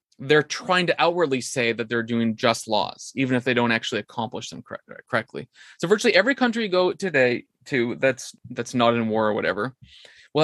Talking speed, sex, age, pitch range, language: 195 wpm, male, 20-39, 120-145 Hz, English